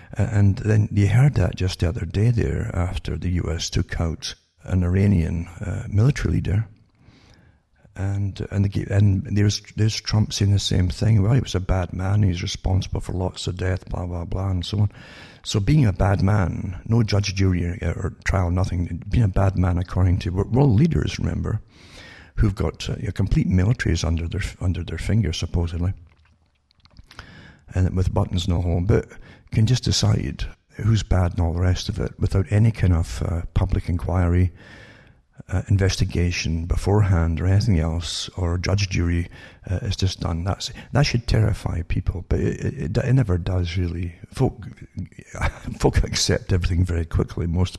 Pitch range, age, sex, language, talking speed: 90-105 Hz, 60-79, male, English, 175 wpm